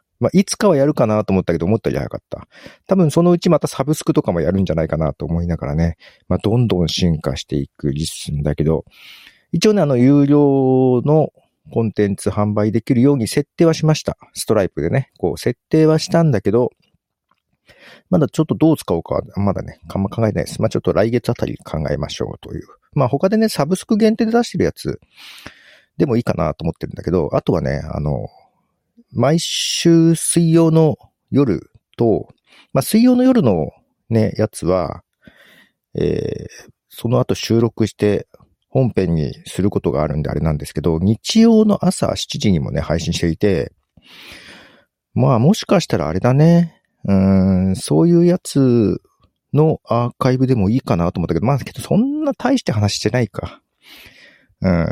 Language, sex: Japanese, male